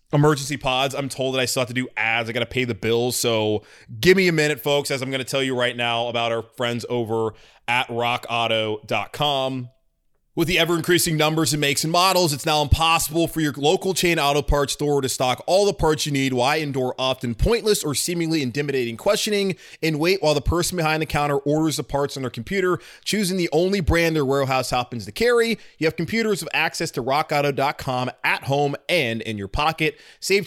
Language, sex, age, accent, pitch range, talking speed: English, male, 20-39, American, 120-155 Hz, 210 wpm